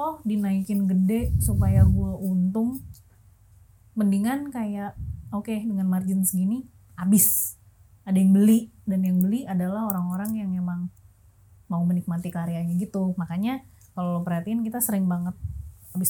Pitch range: 165-200 Hz